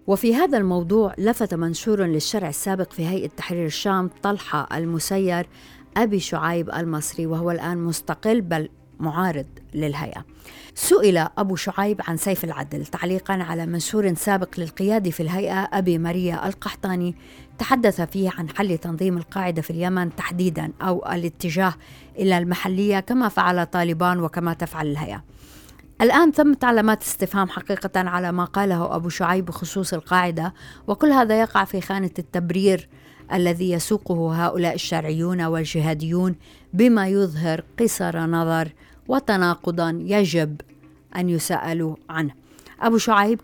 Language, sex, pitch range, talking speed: Arabic, female, 170-195 Hz, 125 wpm